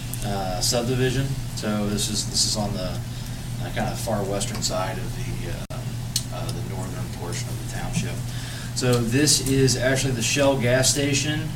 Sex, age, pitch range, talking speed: male, 30-49, 110-125 Hz, 170 wpm